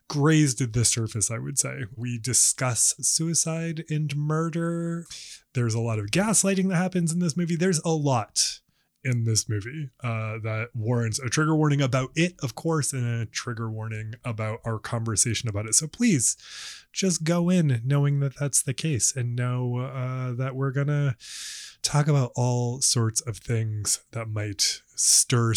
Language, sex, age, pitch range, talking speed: English, male, 20-39, 120-165 Hz, 170 wpm